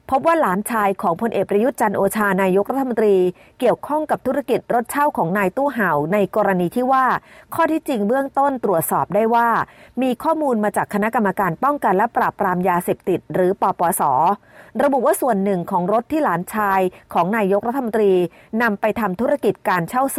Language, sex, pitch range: Thai, female, 190-250 Hz